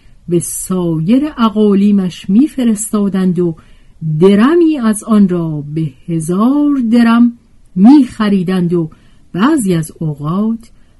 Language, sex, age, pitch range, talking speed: Persian, female, 50-69, 160-230 Hz, 100 wpm